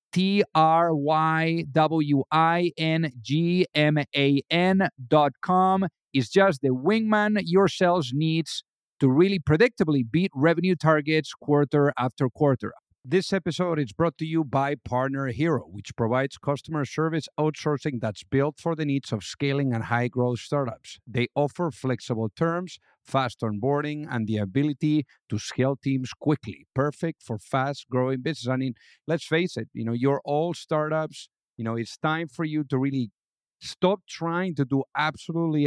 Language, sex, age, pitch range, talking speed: English, male, 50-69, 130-160 Hz, 140 wpm